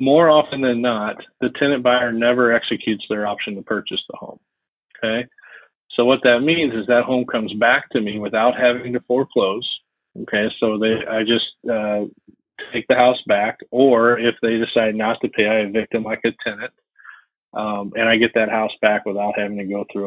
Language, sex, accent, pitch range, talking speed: English, male, American, 110-130 Hz, 195 wpm